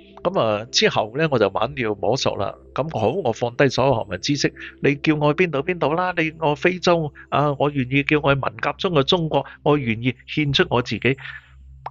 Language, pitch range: Chinese, 90-140 Hz